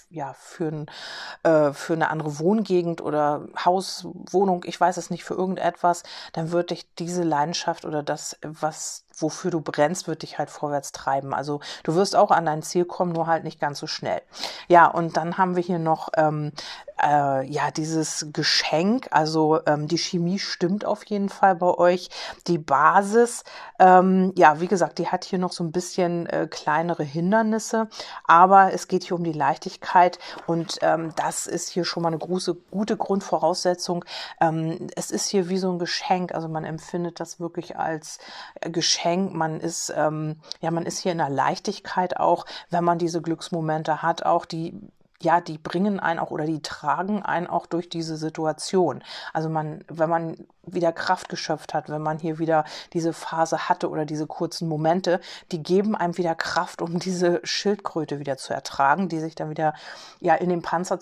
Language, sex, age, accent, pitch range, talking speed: German, female, 40-59, German, 160-180 Hz, 180 wpm